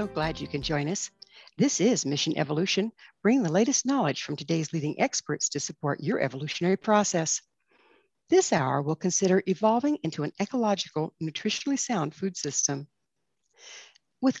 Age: 60-79